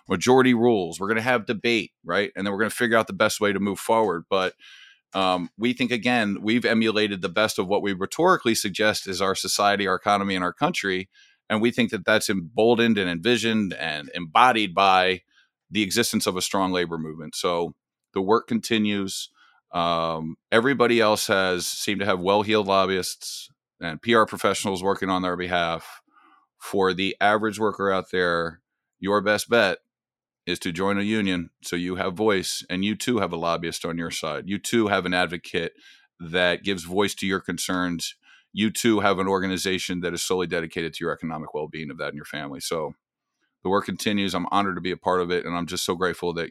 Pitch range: 90-110 Hz